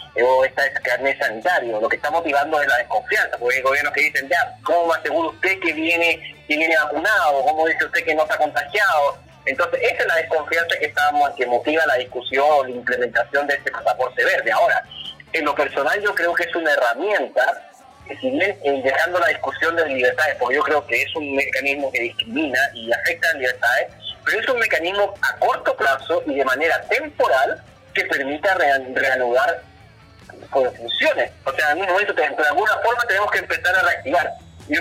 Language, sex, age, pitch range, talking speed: Spanish, male, 30-49, 135-180 Hz, 195 wpm